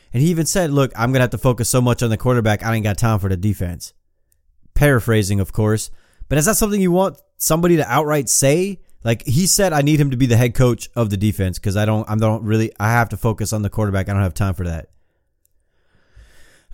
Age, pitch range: 30-49, 100-130 Hz